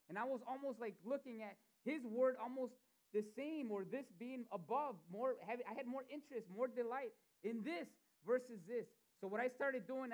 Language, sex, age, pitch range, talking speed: English, male, 30-49, 175-240 Hz, 190 wpm